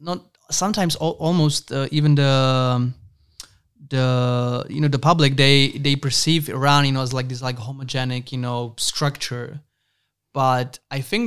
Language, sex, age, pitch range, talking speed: Czech, male, 20-39, 130-150 Hz, 155 wpm